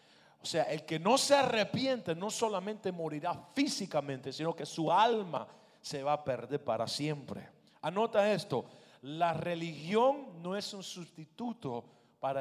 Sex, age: male, 40-59